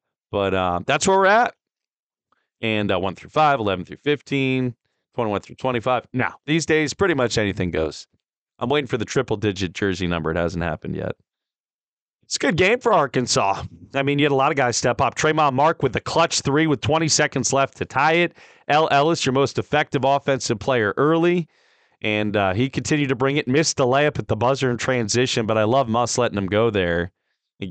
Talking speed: 210 wpm